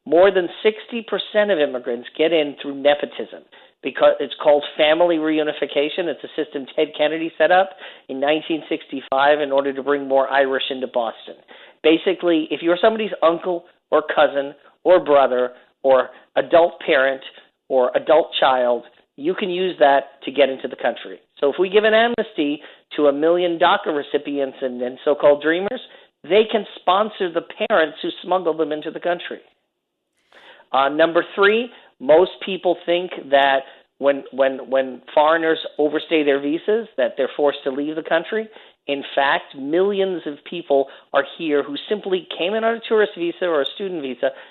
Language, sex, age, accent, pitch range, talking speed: English, male, 50-69, American, 140-185 Hz, 160 wpm